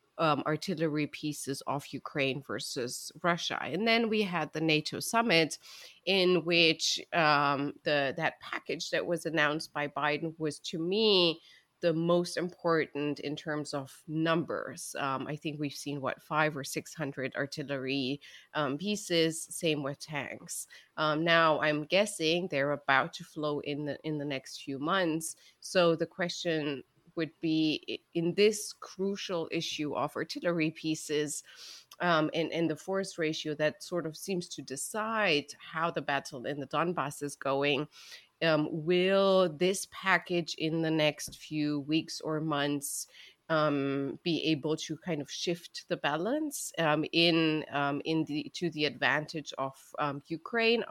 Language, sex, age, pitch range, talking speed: English, female, 30-49, 145-170 Hz, 150 wpm